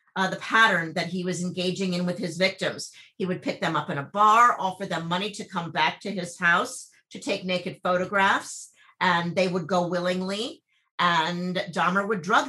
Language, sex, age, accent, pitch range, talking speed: English, female, 50-69, American, 180-220 Hz, 195 wpm